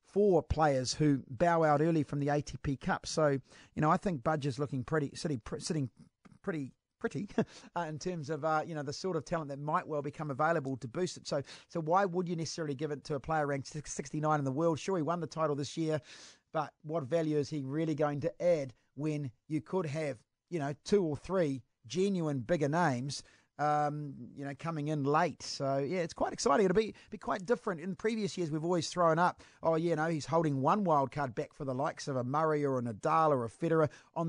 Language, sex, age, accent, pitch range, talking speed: English, male, 40-59, Australian, 135-165 Hz, 230 wpm